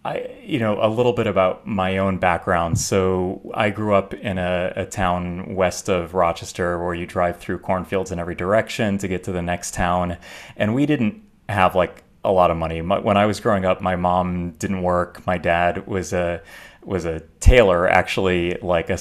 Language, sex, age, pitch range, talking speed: English, male, 30-49, 90-105 Hz, 200 wpm